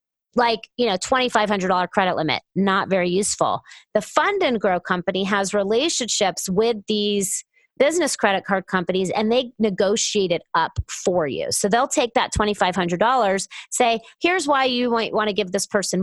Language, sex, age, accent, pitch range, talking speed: English, female, 30-49, American, 185-240 Hz, 160 wpm